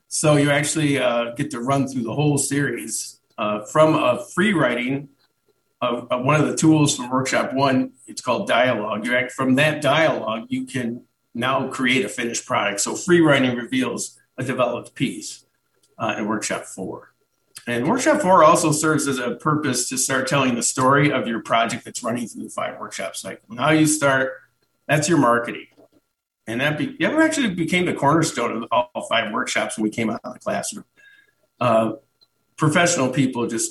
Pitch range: 120-150 Hz